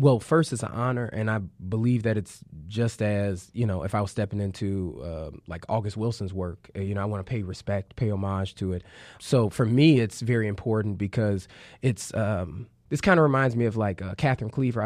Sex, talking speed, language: male, 215 wpm, English